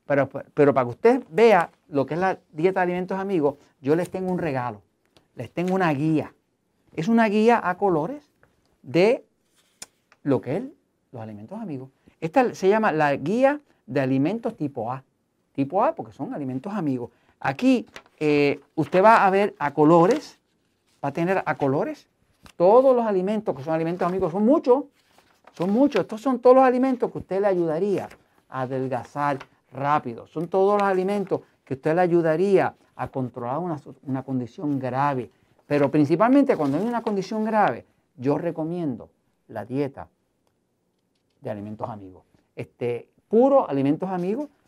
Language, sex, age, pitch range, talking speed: Spanish, male, 50-69, 130-195 Hz, 160 wpm